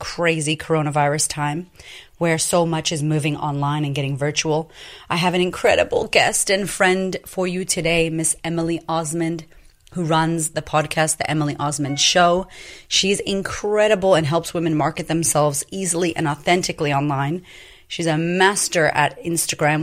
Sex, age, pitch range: female, 30-49, 150-180 Hz